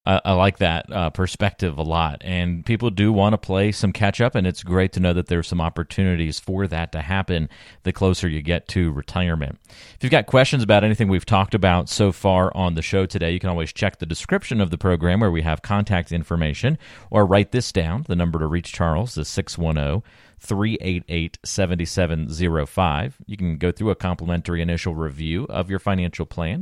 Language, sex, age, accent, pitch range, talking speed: English, male, 40-59, American, 85-105 Hz, 205 wpm